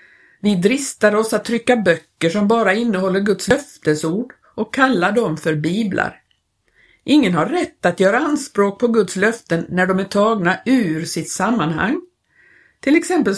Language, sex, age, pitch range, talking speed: Swedish, female, 50-69, 175-225 Hz, 155 wpm